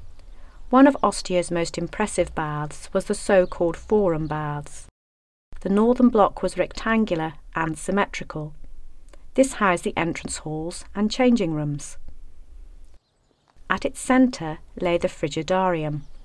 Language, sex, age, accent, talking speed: English, female, 30-49, British, 120 wpm